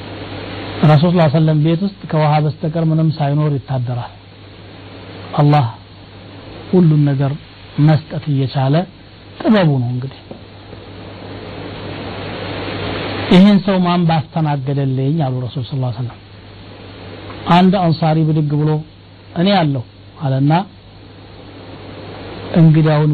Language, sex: Amharic, male